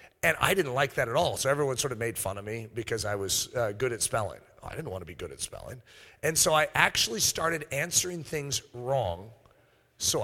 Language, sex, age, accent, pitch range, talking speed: English, male, 40-59, American, 120-170 Hz, 230 wpm